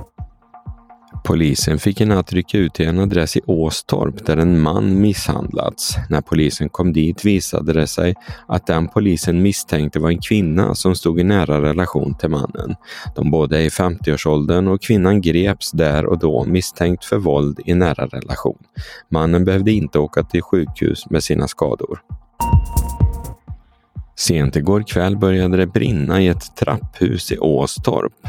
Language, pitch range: Swedish, 80-95 Hz